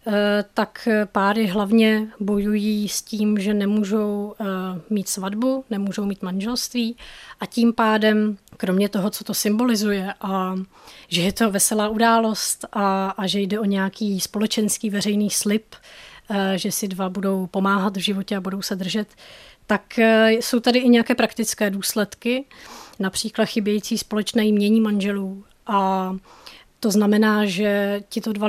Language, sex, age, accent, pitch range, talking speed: Czech, female, 20-39, native, 195-220 Hz, 135 wpm